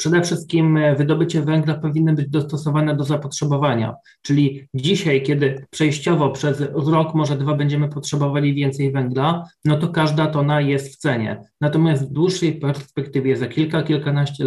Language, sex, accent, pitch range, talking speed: Polish, male, native, 145-165 Hz, 145 wpm